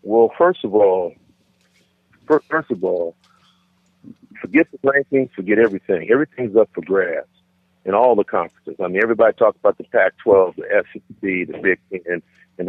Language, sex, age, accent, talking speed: English, male, 50-69, American, 160 wpm